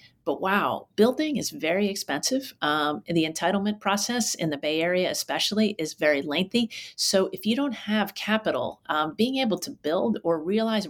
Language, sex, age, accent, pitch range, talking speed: English, female, 40-59, American, 160-220 Hz, 170 wpm